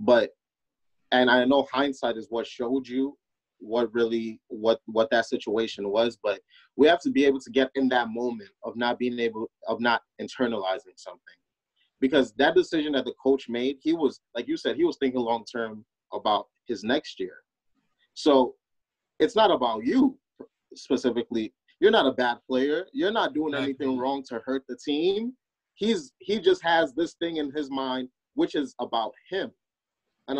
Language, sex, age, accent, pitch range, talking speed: English, male, 30-49, American, 115-155 Hz, 180 wpm